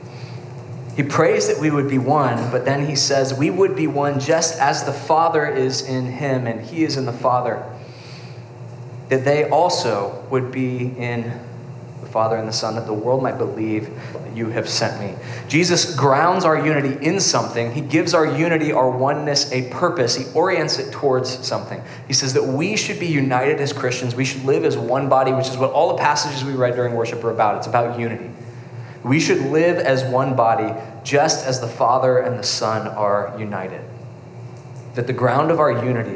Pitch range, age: 120-140 Hz, 20-39